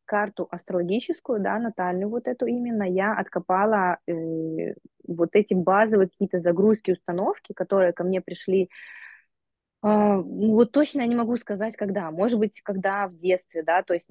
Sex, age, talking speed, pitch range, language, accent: female, 20-39, 155 wpm, 180-215 Hz, Russian, native